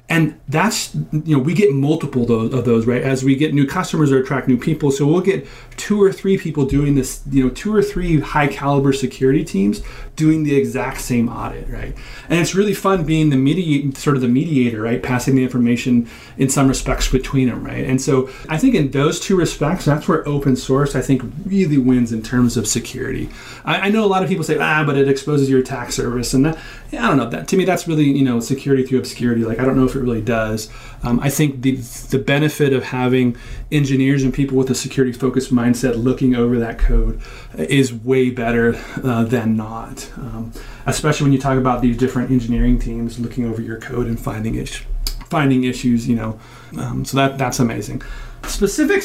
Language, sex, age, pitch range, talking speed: English, male, 30-49, 125-150 Hz, 210 wpm